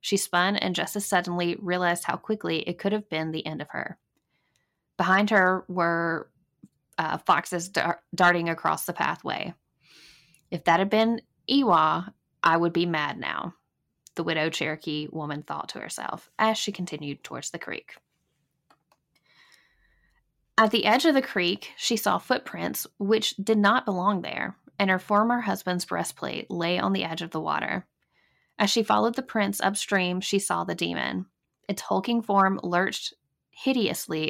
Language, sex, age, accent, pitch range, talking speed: English, female, 10-29, American, 170-210 Hz, 155 wpm